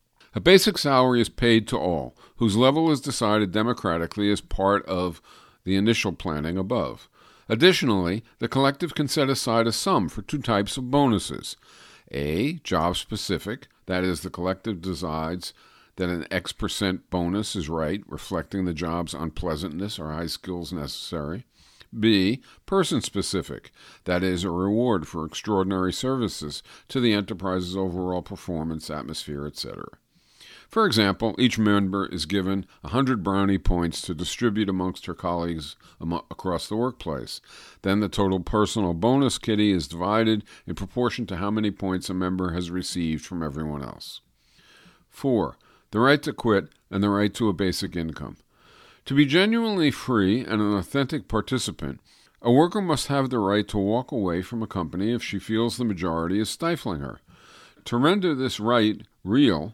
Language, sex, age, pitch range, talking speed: English, male, 50-69, 90-115 Hz, 155 wpm